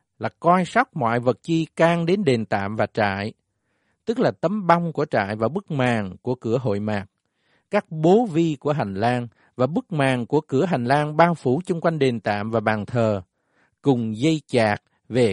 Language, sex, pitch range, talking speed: Vietnamese, male, 110-160 Hz, 200 wpm